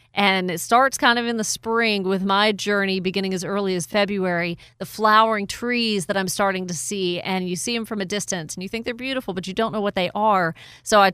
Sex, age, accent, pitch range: female, 30-49, American, 190-220 Hz